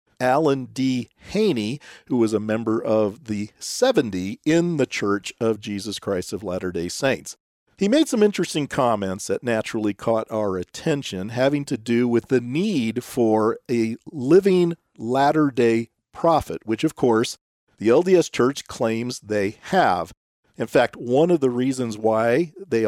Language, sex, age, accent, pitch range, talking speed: English, male, 50-69, American, 110-165 Hz, 150 wpm